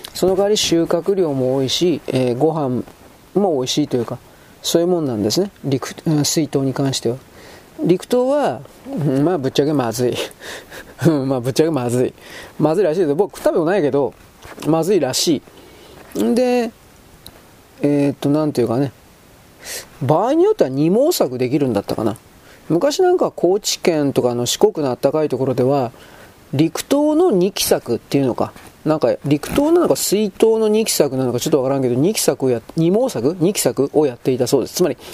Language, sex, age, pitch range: Japanese, male, 40-59, 130-195 Hz